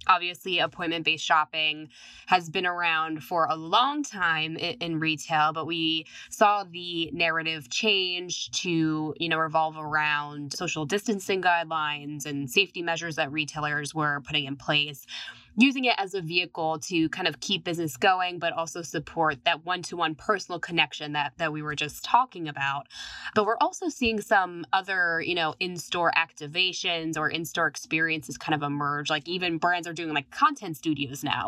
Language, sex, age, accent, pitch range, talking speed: English, female, 20-39, American, 155-185 Hz, 165 wpm